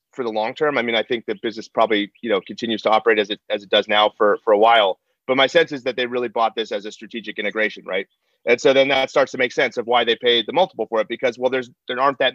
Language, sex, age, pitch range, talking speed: English, male, 30-49, 110-140 Hz, 300 wpm